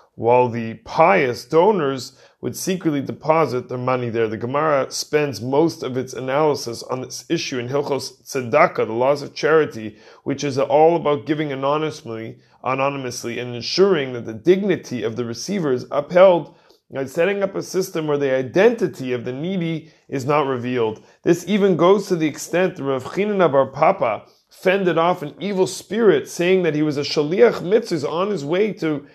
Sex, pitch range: male, 135-180 Hz